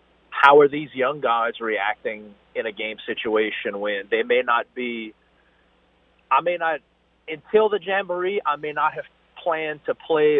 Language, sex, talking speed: English, male, 160 wpm